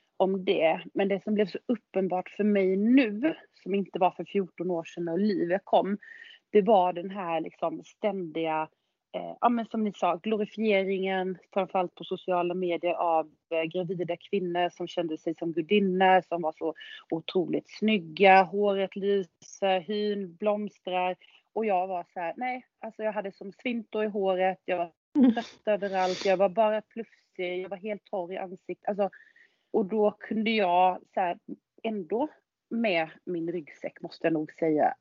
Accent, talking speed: Swedish, 170 wpm